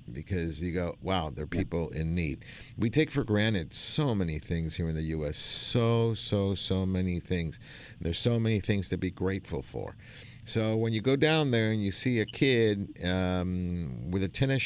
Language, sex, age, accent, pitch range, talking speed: English, male, 50-69, American, 95-120 Hz, 190 wpm